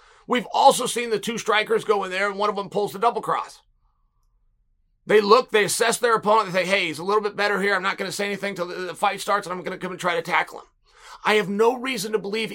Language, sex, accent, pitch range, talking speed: English, male, American, 195-245 Hz, 275 wpm